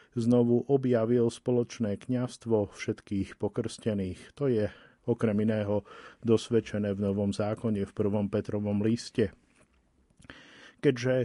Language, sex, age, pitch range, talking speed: Slovak, male, 40-59, 105-125 Hz, 100 wpm